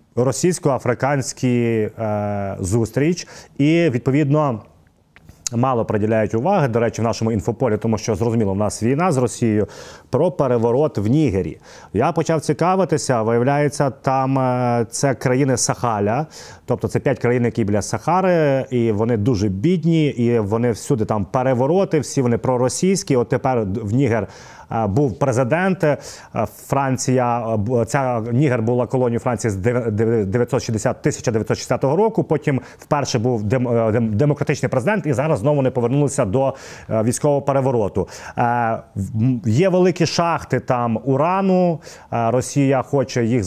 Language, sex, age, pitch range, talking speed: Ukrainian, male, 30-49, 115-145 Hz, 125 wpm